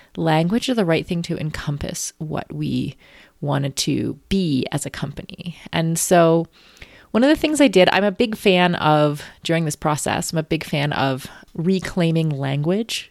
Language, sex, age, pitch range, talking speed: English, female, 30-49, 145-185 Hz, 175 wpm